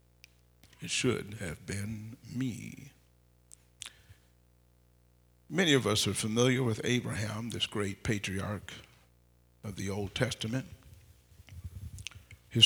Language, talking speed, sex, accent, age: English, 95 wpm, male, American, 50-69